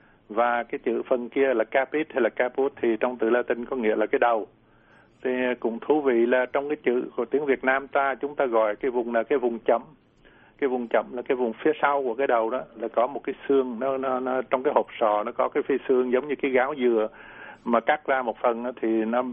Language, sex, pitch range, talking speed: Vietnamese, male, 115-135 Hz, 260 wpm